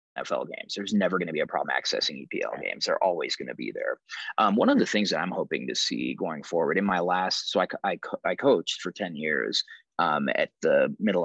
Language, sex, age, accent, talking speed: English, male, 20-39, American, 240 wpm